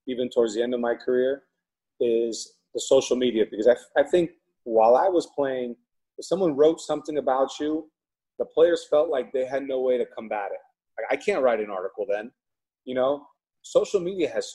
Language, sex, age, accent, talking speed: English, male, 30-49, American, 195 wpm